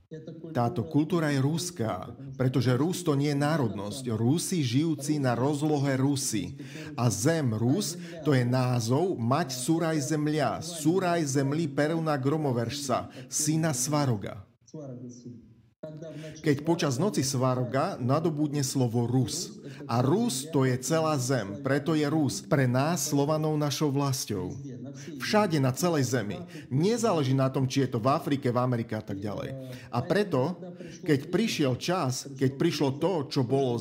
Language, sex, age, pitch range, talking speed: Slovak, male, 40-59, 130-160 Hz, 140 wpm